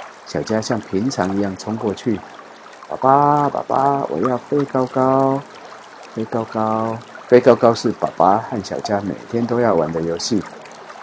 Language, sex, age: Chinese, male, 50-69